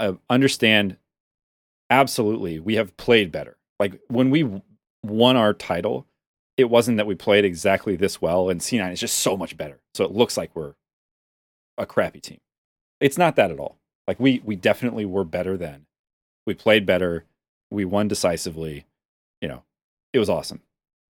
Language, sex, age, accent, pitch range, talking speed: English, male, 30-49, American, 85-120 Hz, 165 wpm